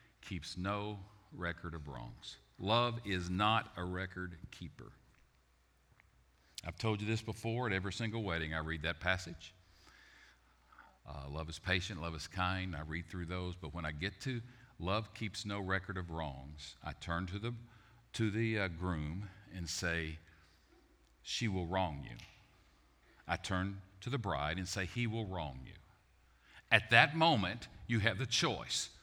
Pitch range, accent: 80-110 Hz, American